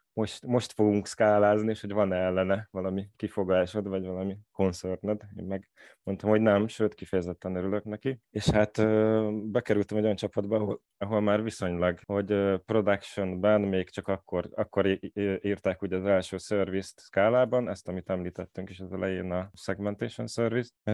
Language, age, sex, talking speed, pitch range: Hungarian, 20-39, male, 145 wpm, 95-105 Hz